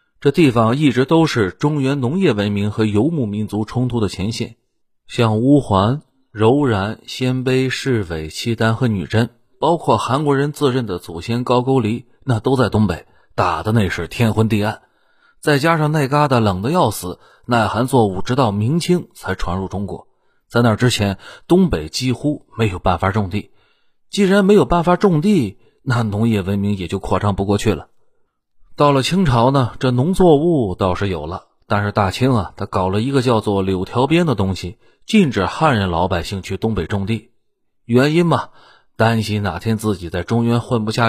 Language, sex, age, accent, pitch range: Chinese, male, 30-49, native, 100-140 Hz